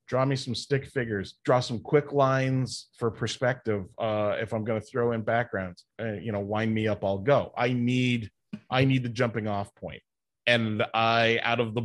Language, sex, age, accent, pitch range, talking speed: English, male, 30-49, American, 105-130 Hz, 205 wpm